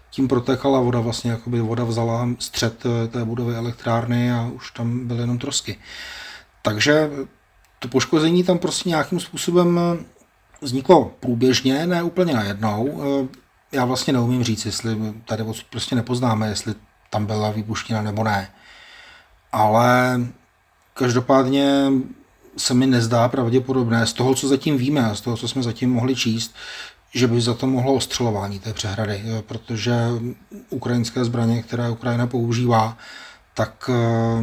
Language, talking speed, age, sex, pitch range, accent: Czech, 130 wpm, 30-49, male, 115-125 Hz, native